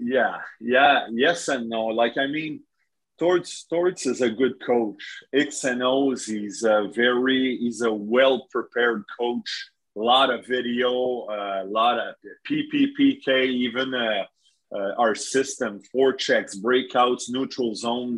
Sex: male